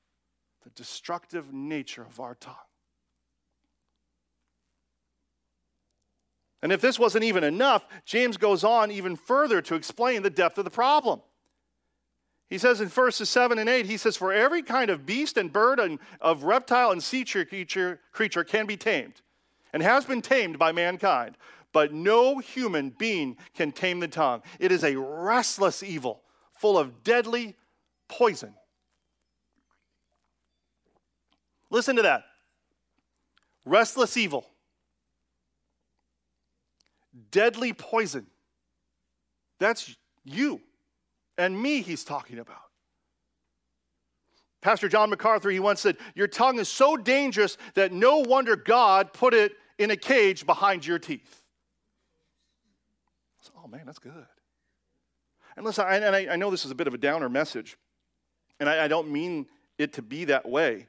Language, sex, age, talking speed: English, male, 40-59, 140 wpm